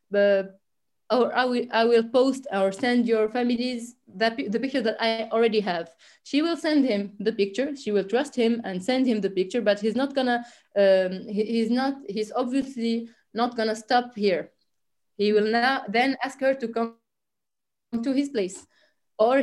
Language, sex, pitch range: French, female, 215-265 Hz